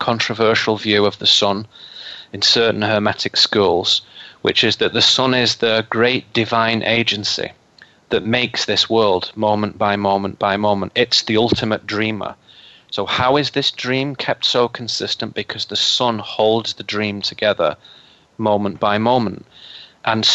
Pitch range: 105-125 Hz